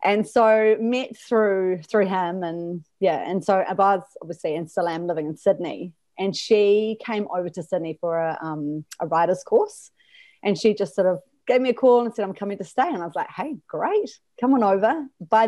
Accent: Australian